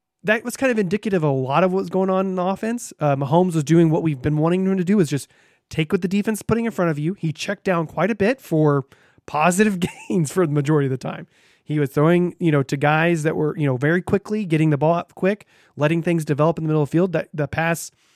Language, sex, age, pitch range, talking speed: English, male, 30-49, 145-185 Hz, 275 wpm